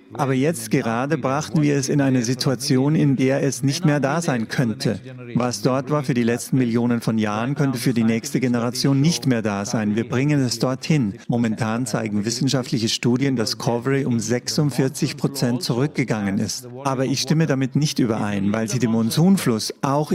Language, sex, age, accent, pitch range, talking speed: English, male, 40-59, German, 120-145 Hz, 180 wpm